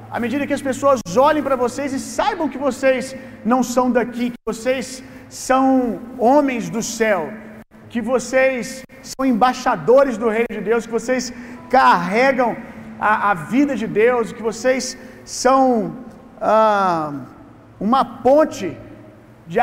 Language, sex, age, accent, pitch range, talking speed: Gujarati, male, 40-59, Brazilian, 225-265 Hz, 135 wpm